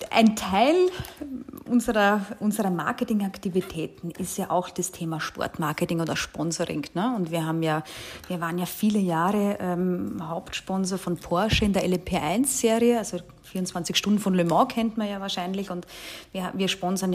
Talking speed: 155 wpm